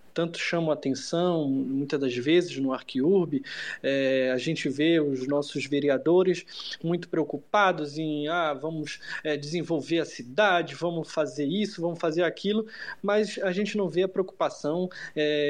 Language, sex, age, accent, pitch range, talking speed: Portuguese, male, 20-39, Brazilian, 145-185 Hz, 150 wpm